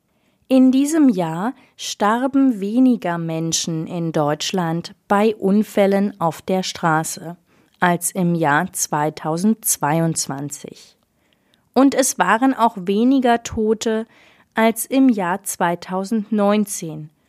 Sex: female